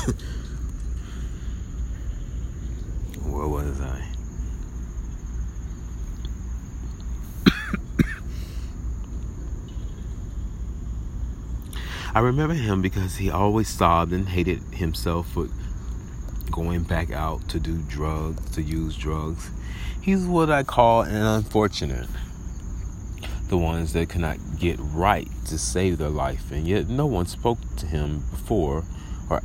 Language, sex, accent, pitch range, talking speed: English, male, American, 70-90 Hz, 100 wpm